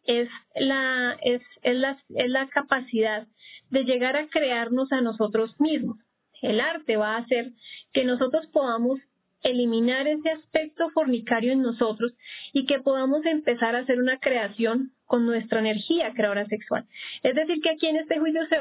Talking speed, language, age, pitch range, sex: 150 wpm, Spanish, 30-49, 230-285 Hz, female